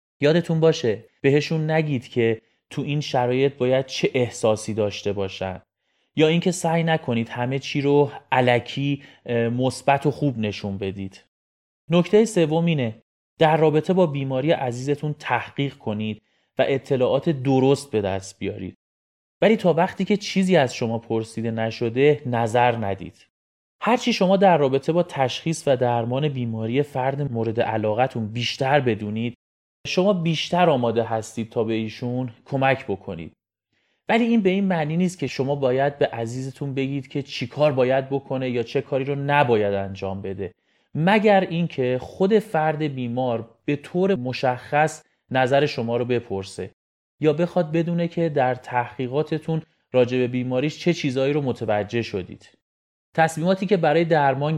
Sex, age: male, 30-49